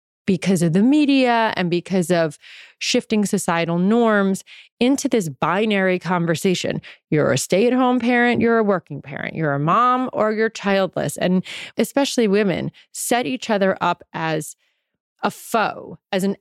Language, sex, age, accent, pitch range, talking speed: English, female, 30-49, American, 170-220 Hz, 145 wpm